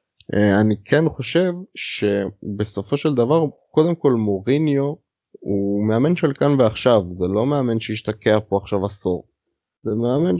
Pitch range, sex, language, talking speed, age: 105-135 Hz, male, Hebrew, 135 wpm, 20-39